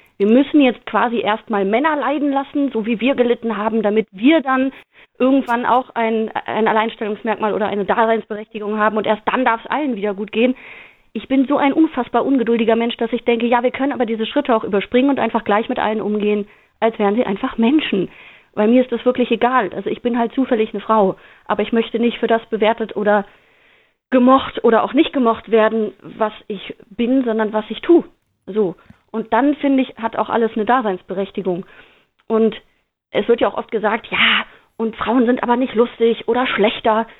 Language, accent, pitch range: German, German, 210-245 Hz